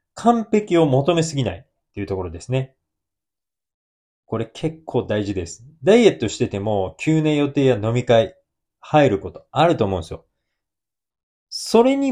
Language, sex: Japanese, male